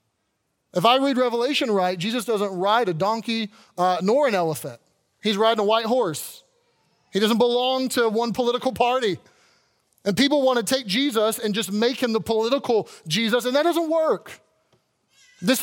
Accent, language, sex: American, English, male